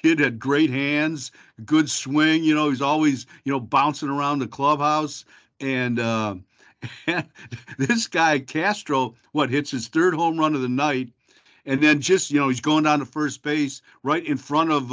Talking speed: 180 wpm